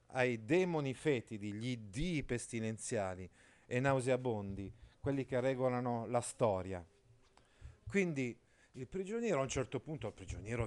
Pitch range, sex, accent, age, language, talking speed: 110-130 Hz, male, native, 40-59, Italian, 125 wpm